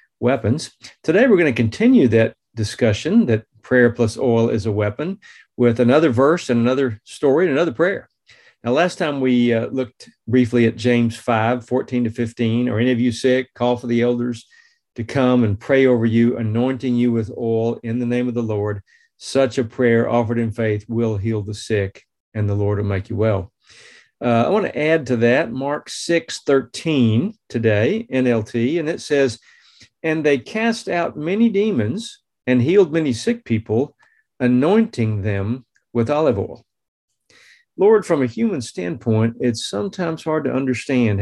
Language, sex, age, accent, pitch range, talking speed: English, male, 40-59, American, 115-130 Hz, 175 wpm